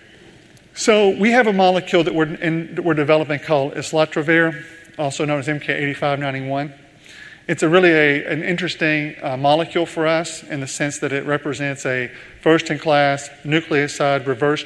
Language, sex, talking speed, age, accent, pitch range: English, male, 150 wpm, 40-59, American, 140-165 Hz